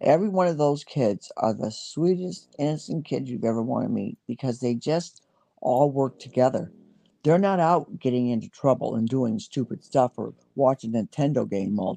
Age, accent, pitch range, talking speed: 50-69, American, 135-200 Hz, 180 wpm